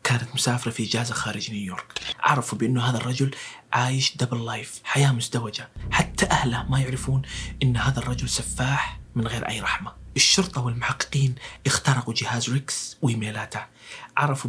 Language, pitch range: Arabic, 120-135 Hz